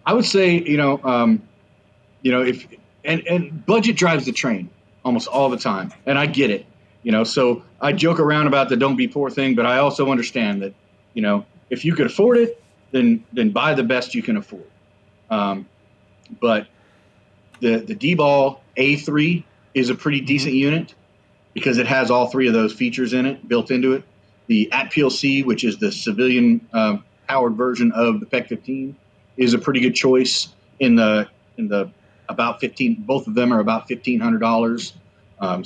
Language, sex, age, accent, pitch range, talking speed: English, male, 30-49, American, 105-145 Hz, 185 wpm